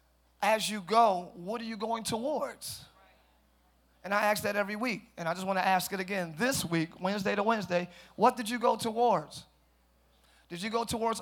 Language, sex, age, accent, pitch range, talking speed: English, male, 30-49, American, 155-225 Hz, 195 wpm